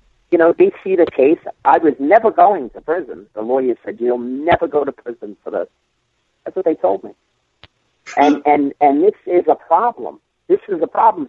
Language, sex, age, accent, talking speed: English, male, 50-69, American, 200 wpm